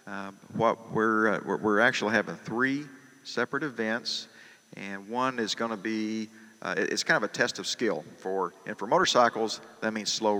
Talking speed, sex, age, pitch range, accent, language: 190 wpm, male, 50-69, 100-110 Hz, American, English